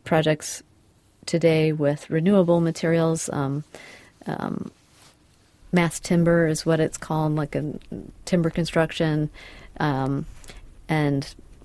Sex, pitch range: female, 145-165 Hz